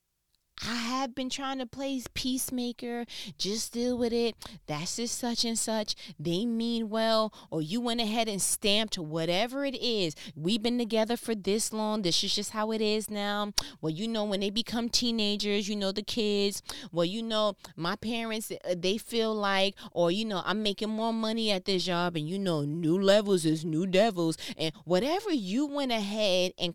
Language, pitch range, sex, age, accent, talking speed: English, 165-225 Hz, female, 20-39, American, 190 wpm